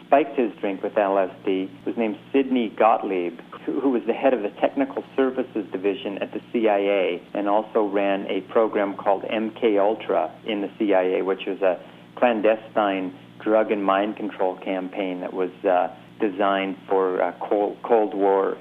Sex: male